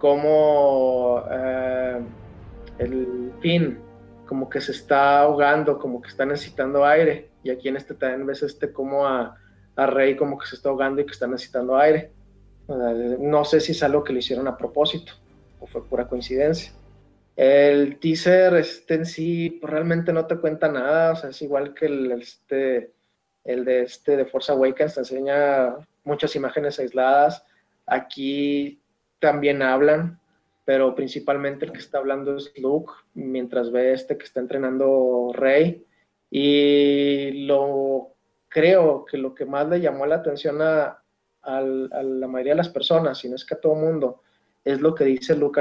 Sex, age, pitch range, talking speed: male, 30-49, 130-150 Hz, 165 wpm